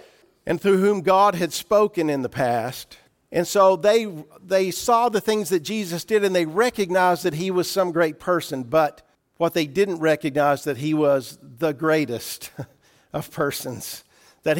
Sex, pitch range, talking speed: male, 140-180 Hz, 170 wpm